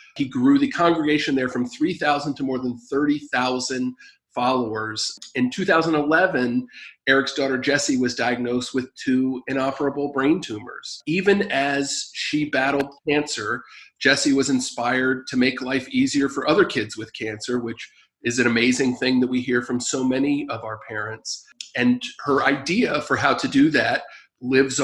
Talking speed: 155 wpm